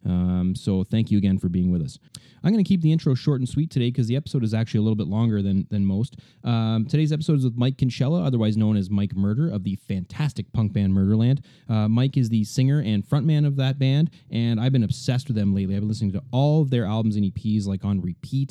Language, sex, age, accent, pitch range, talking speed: English, male, 30-49, American, 110-145 Hz, 255 wpm